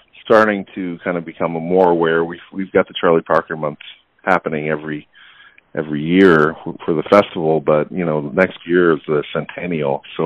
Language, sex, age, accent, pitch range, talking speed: English, male, 40-59, American, 80-115 Hz, 180 wpm